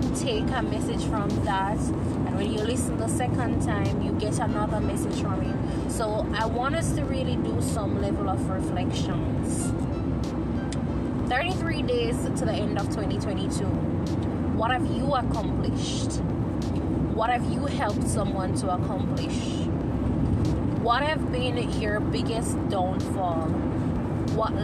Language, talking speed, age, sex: English, 130 wpm, 20-39, female